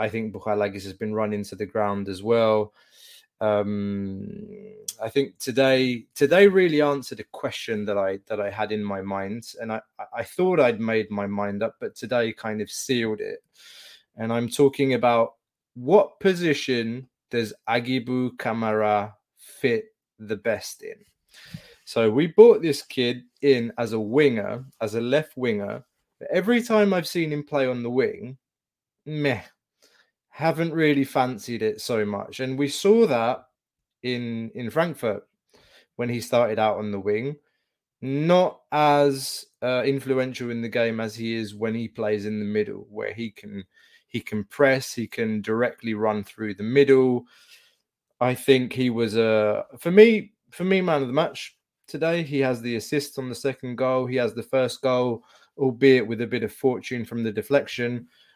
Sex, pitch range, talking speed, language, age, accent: male, 110-140 Hz, 170 wpm, English, 20-39, British